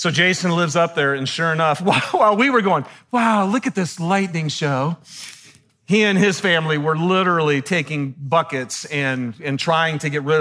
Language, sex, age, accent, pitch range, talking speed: English, male, 40-59, American, 135-185 Hz, 185 wpm